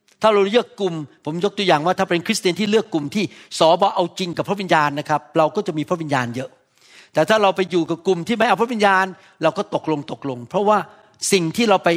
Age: 60-79